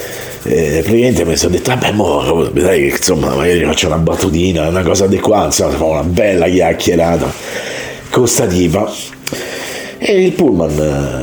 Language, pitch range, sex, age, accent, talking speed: Italian, 85-115 Hz, male, 50-69, native, 145 wpm